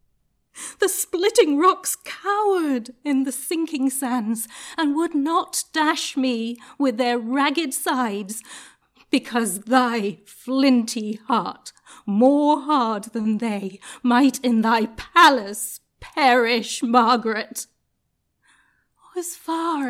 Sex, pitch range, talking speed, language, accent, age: female, 225-275 Hz, 100 wpm, English, British, 40-59